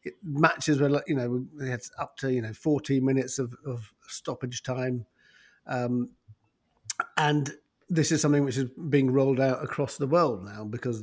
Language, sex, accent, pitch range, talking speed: English, male, British, 120-150 Hz, 170 wpm